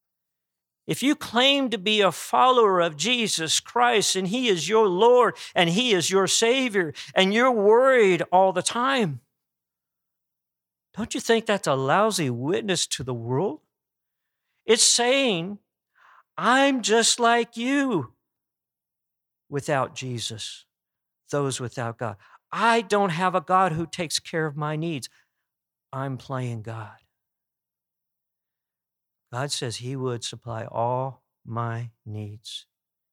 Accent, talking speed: American, 125 wpm